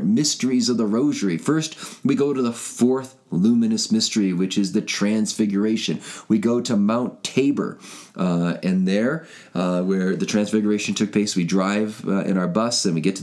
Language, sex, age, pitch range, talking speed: English, male, 30-49, 95-130 Hz, 180 wpm